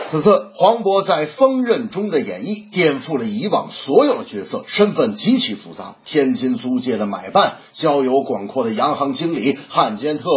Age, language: 30-49, Chinese